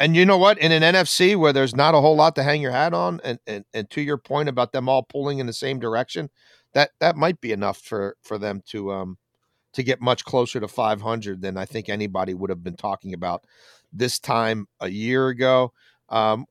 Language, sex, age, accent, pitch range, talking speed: English, male, 50-69, American, 110-140 Hz, 230 wpm